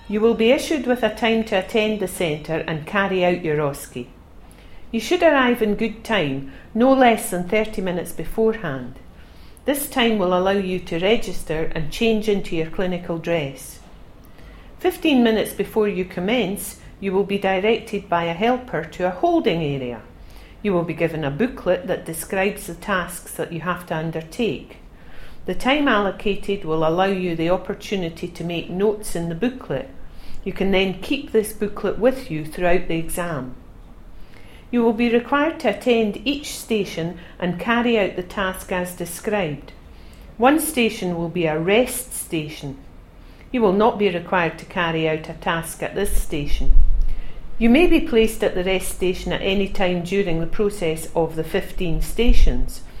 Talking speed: 170 wpm